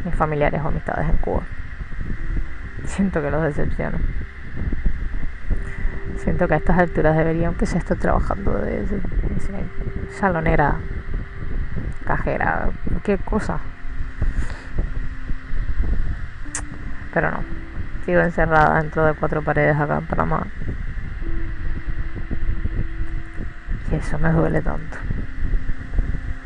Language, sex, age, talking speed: Spanish, female, 20-39, 90 wpm